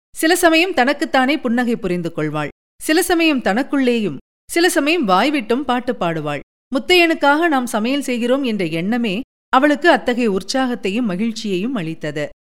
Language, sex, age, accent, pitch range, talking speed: Tamil, female, 40-59, native, 205-290 Hz, 100 wpm